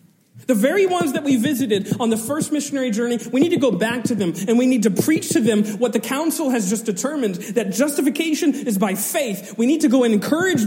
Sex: male